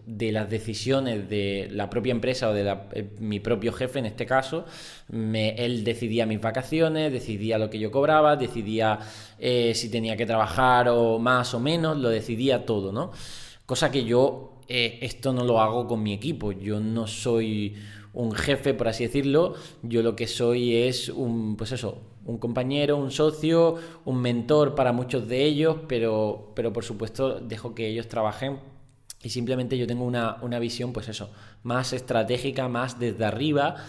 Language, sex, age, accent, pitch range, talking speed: Spanish, male, 20-39, Spanish, 110-135 Hz, 175 wpm